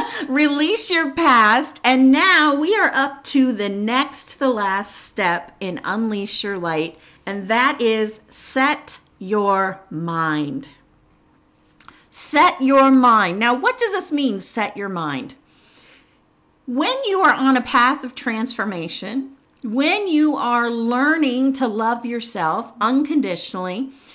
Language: English